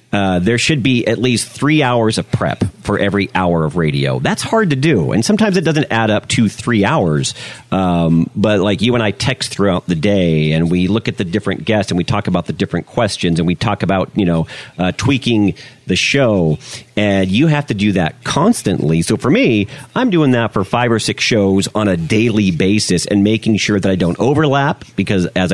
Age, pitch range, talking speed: 40-59, 95-120 Hz, 220 wpm